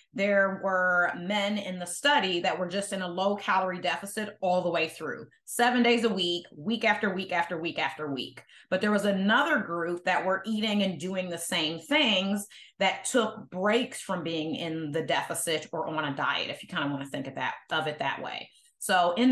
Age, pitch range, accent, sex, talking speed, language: 30-49, 175-210 Hz, American, female, 215 wpm, English